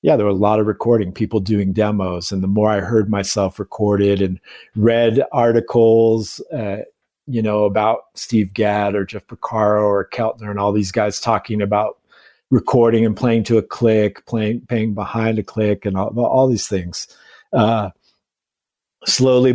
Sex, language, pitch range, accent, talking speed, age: male, English, 100-115 Hz, American, 170 wpm, 50-69